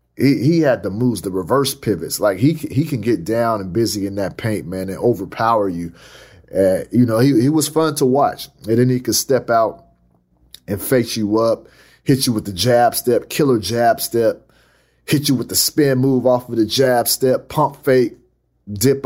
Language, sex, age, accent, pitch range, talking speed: English, male, 30-49, American, 100-130 Hz, 205 wpm